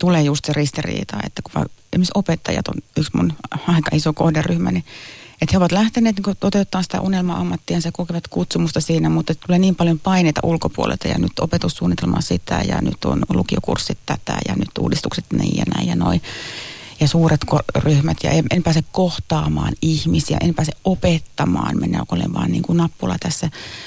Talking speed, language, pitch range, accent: 170 wpm, Finnish, 155-195 Hz, native